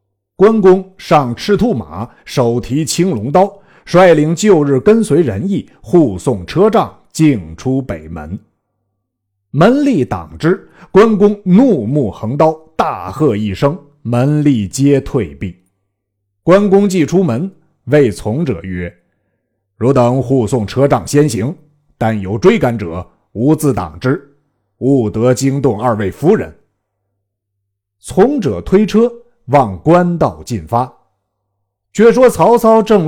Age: 50-69